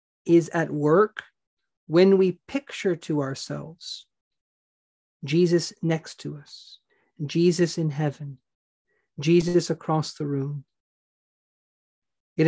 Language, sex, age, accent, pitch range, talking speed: English, male, 40-59, American, 150-195 Hz, 95 wpm